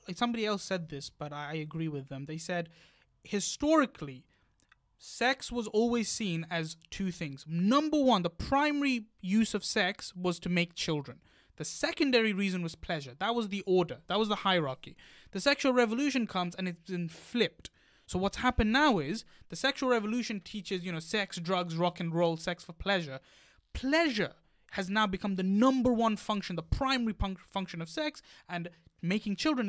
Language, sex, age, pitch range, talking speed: English, male, 20-39, 170-230 Hz, 175 wpm